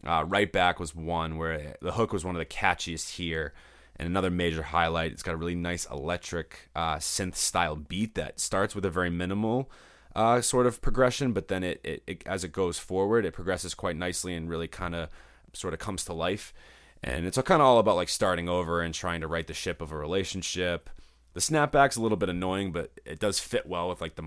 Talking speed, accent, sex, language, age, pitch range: 230 wpm, American, male, English, 20-39, 80-95 Hz